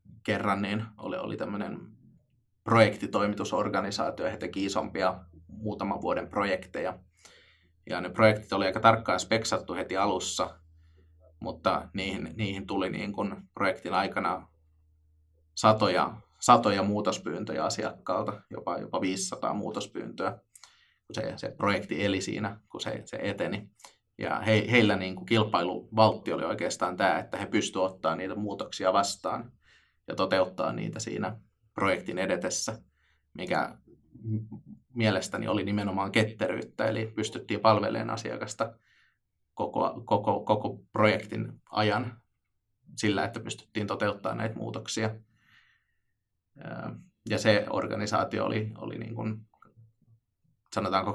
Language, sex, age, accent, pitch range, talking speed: Finnish, male, 20-39, native, 95-110 Hz, 105 wpm